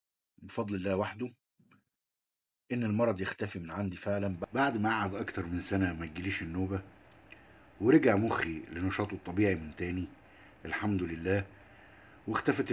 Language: Arabic